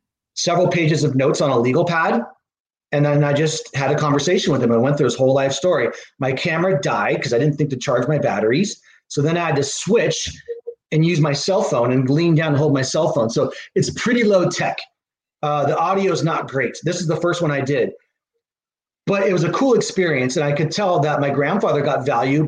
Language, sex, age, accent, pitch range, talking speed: English, male, 30-49, American, 140-180 Hz, 230 wpm